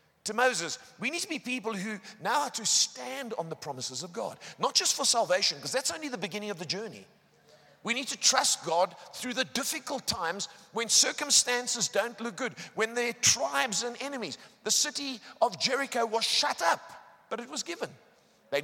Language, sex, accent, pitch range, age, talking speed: English, male, British, 205-275 Hz, 50-69, 195 wpm